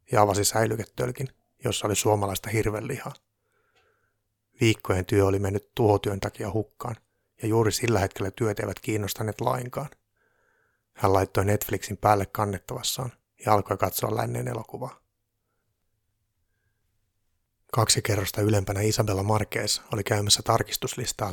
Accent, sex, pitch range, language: native, male, 100-115 Hz, Finnish